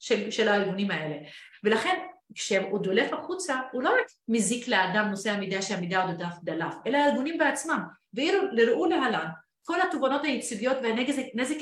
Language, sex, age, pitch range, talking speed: Hebrew, female, 30-49, 210-285 Hz, 145 wpm